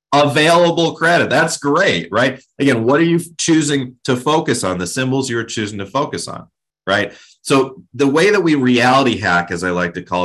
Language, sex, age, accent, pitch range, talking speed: English, male, 30-49, American, 100-145 Hz, 195 wpm